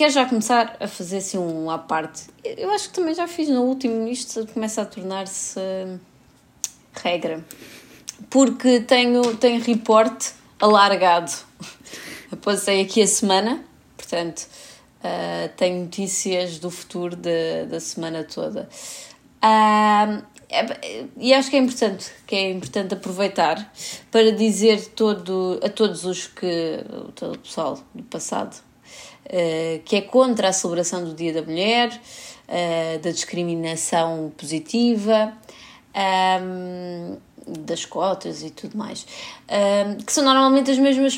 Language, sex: Portuguese, female